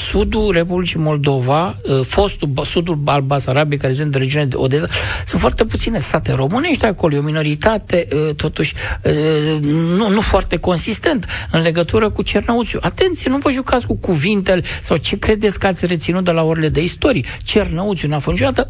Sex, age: male, 60-79